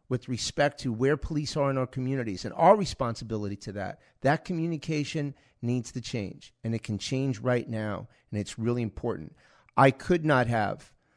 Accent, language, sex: American, English, male